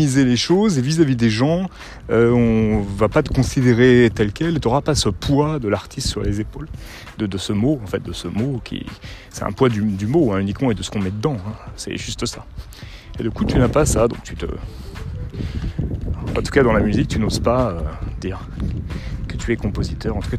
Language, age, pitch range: French, 30-49, 100-125 Hz